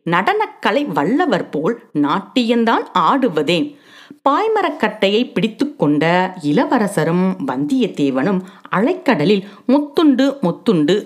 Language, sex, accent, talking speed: Tamil, female, native, 70 wpm